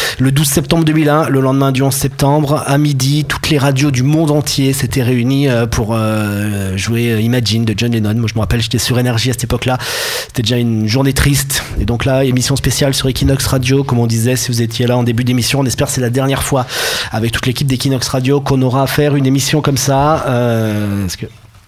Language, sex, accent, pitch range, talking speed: French, male, French, 125-145 Hz, 220 wpm